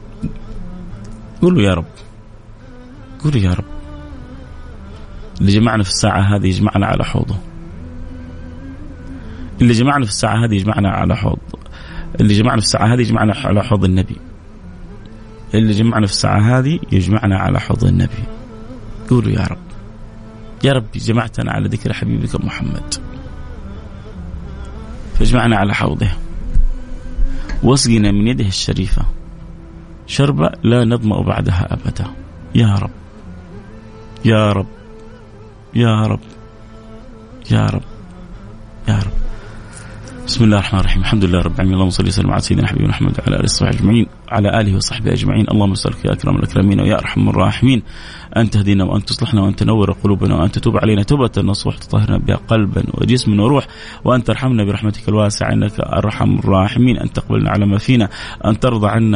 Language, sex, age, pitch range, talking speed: Arabic, male, 30-49, 95-115 Hz, 130 wpm